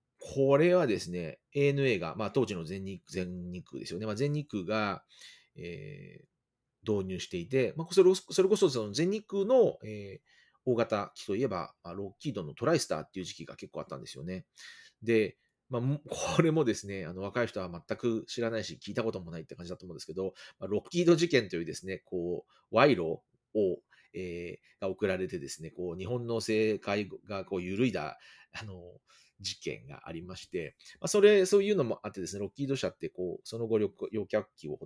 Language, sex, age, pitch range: Japanese, male, 30-49, 95-145 Hz